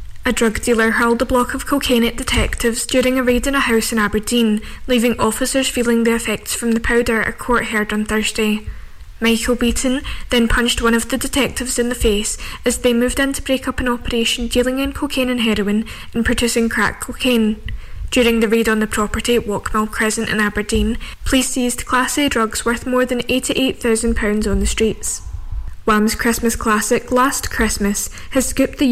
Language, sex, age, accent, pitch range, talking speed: English, female, 10-29, British, 220-250 Hz, 190 wpm